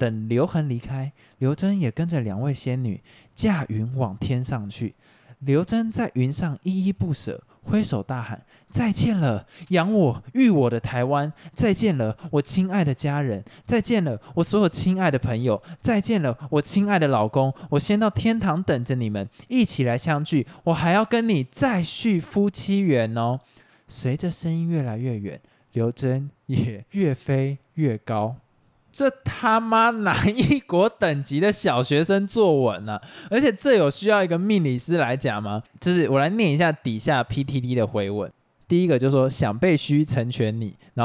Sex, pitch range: male, 125-180 Hz